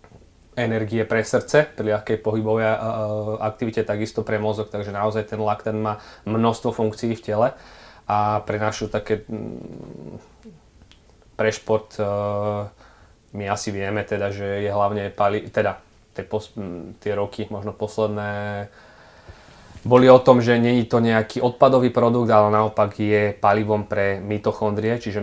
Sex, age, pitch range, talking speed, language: male, 20-39, 100-110 Hz, 140 wpm, Slovak